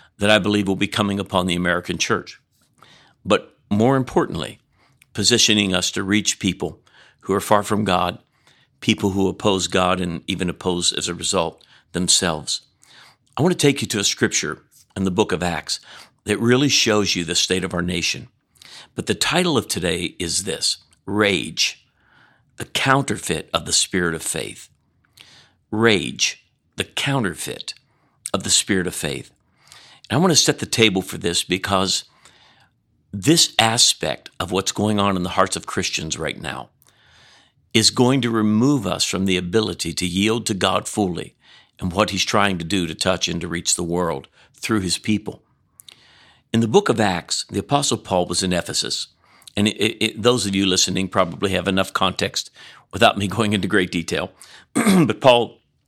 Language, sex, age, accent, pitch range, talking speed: English, male, 50-69, American, 90-110 Hz, 170 wpm